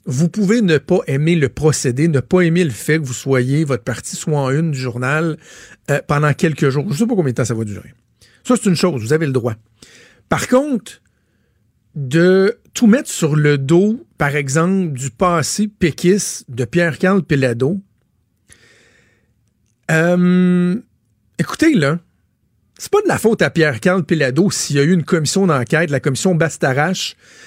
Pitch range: 140-190 Hz